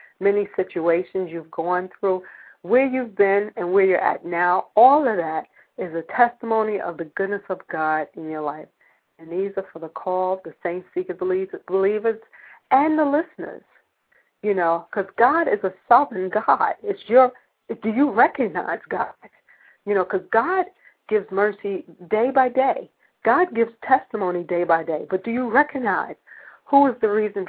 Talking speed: 170 wpm